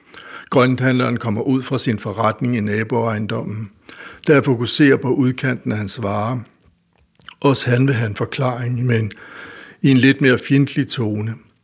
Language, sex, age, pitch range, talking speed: Danish, male, 60-79, 110-130 Hz, 150 wpm